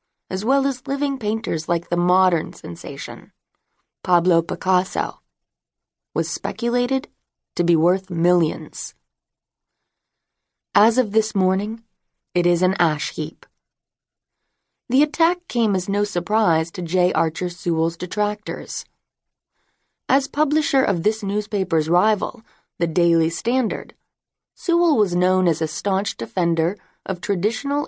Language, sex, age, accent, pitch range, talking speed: English, female, 30-49, American, 165-215 Hz, 120 wpm